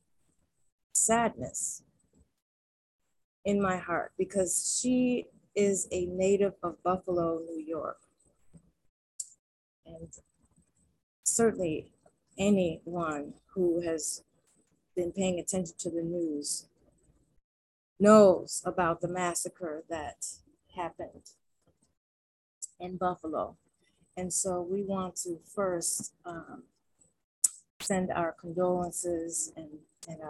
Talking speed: 85 wpm